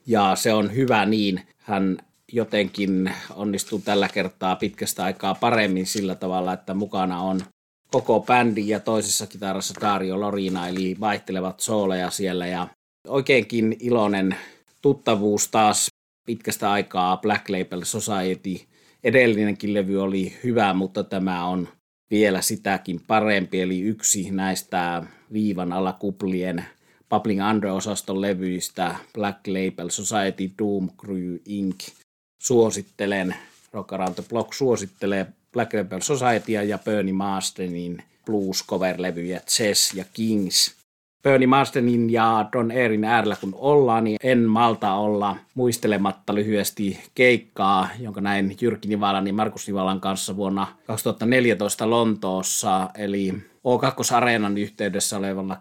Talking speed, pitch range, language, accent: 120 wpm, 95-110 Hz, Finnish, native